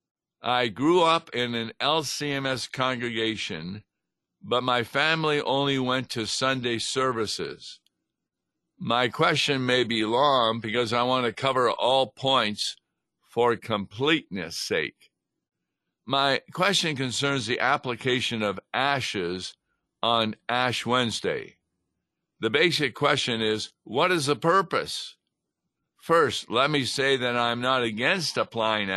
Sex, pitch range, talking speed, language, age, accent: male, 110-135 Hz, 120 wpm, English, 60-79, American